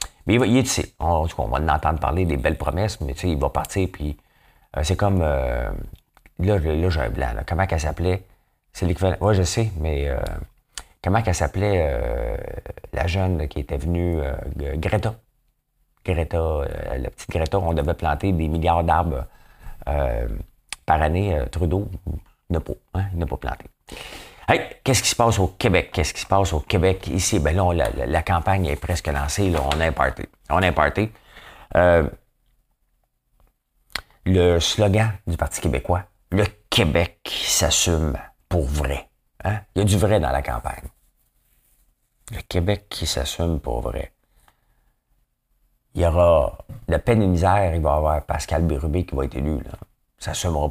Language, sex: English, male